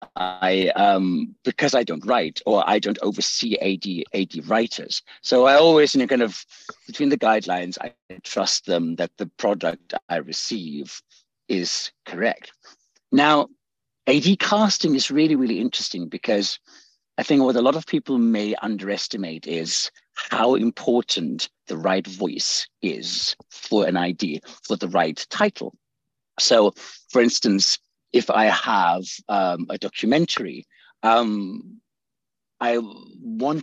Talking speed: 140 wpm